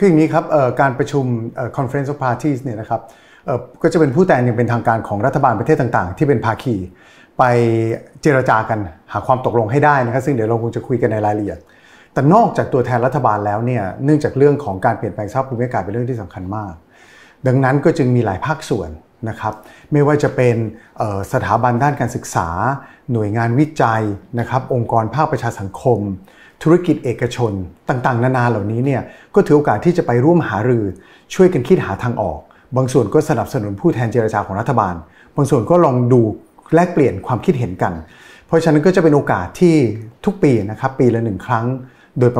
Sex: male